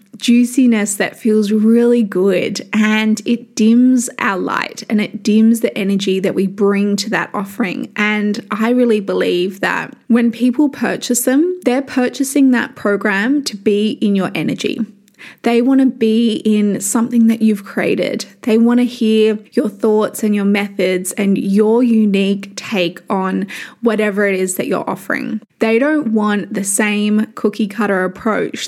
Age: 20-39